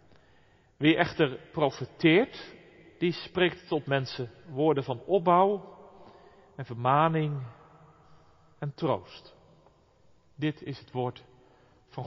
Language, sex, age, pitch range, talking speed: Dutch, male, 40-59, 125-160 Hz, 95 wpm